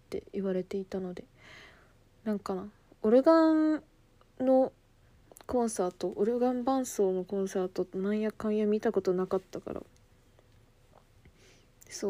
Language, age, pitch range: Japanese, 20-39, 180-215 Hz